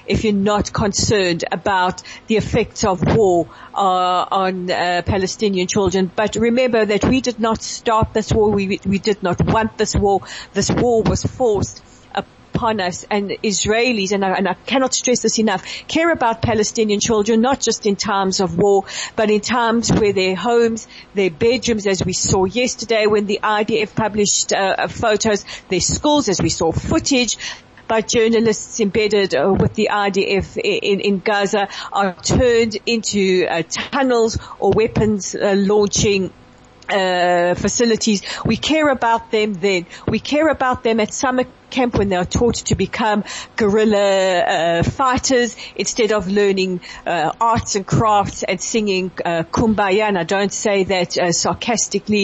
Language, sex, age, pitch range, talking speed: English, female, 40-59, 190-225 Hz, 160 wpm